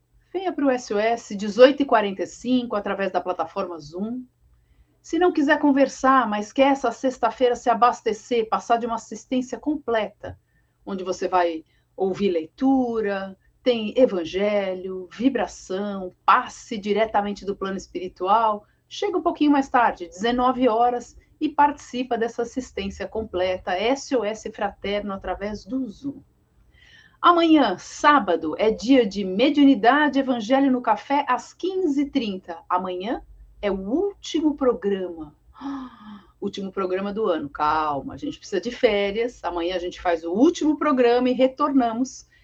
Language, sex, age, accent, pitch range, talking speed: Portuguese, female, 40-59, Brazilian, 200-275 Hz, 125 wpm